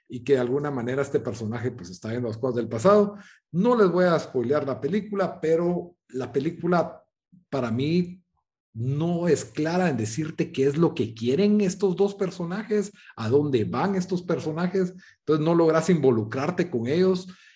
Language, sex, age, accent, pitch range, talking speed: Spanish, male, 50-69, Mexican, 125-185 Hz, 170 wpm